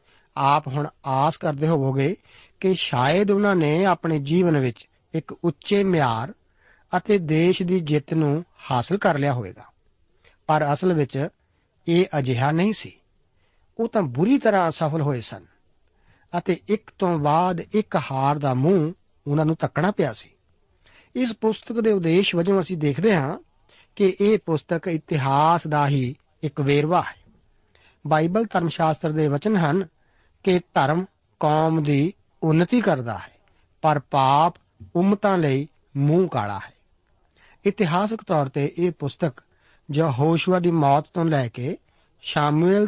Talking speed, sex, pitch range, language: 140 wpm, male, 140-185 Hz, Punjabi